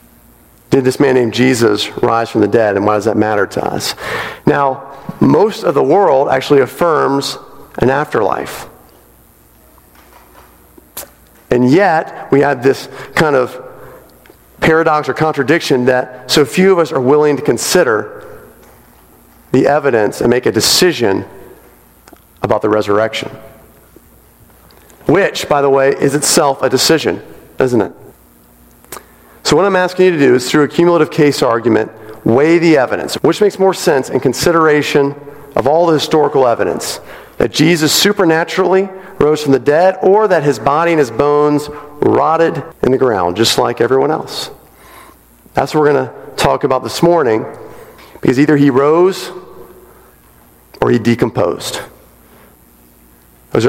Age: 40-59